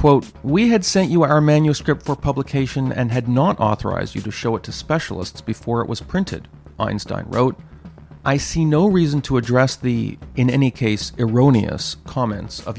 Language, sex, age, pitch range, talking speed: English, male, 40-59, 110-145 Hz, 175 wpm